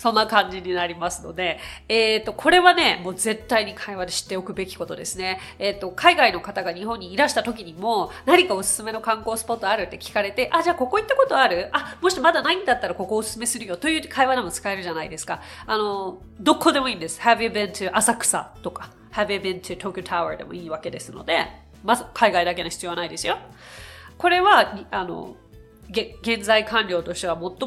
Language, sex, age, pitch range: Japanese, female, 30-49, 185-260 Hz